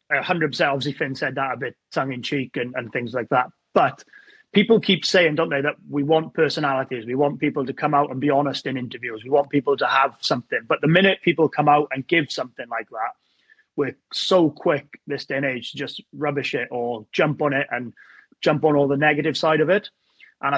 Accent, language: British, English